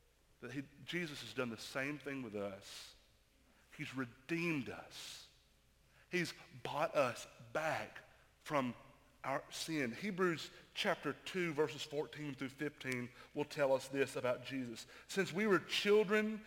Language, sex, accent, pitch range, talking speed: English, male, American, 150-210 Hz, 130 wpm